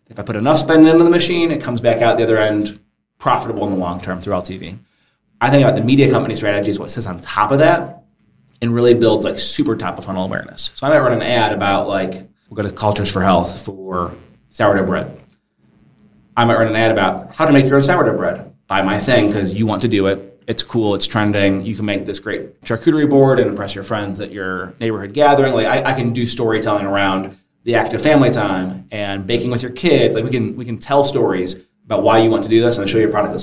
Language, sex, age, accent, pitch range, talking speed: English, male, 30-49, American, 100-130 Hz, 250 wpm